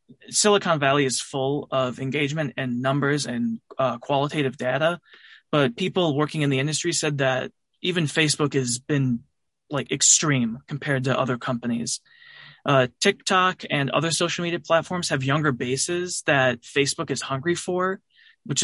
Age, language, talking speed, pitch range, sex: 20-39, English, 150 wpm, 130-170 Hz, male